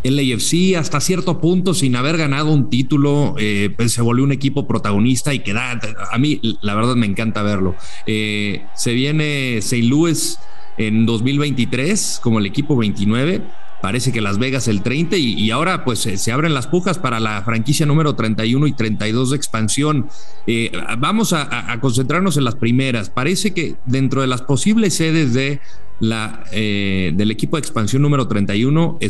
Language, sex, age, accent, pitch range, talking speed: English, male, 40-59, Mexican, 110-145 Hz, 175 wpm